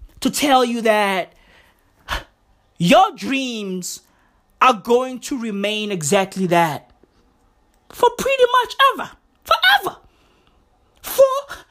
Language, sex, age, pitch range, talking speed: English, male, 30-49, 215-330 Hz, 90 wpm